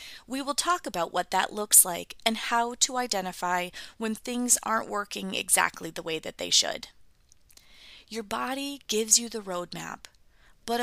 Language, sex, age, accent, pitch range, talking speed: English, female, 30-49, American, 185-240 Hz, 160 wpm